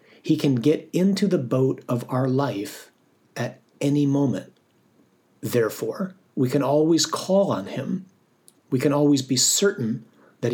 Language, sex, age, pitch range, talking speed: English, male, 50-69, 125-150 Hz, 140 wpm